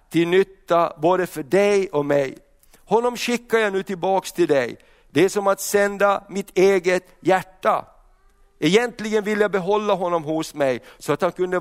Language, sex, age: Swedish, male, 50-69